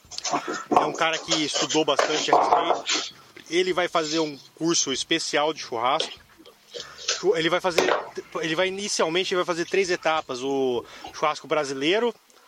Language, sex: Portuguese, male